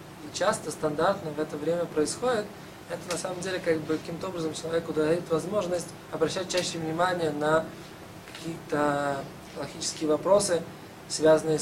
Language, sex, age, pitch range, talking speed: Russian, male, 20-39, 155-175 Hz, 130 wpm